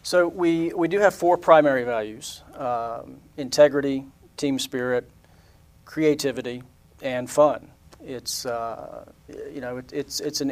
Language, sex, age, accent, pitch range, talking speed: English, male, 40-59, American, 120-135 Hz, 125 wpm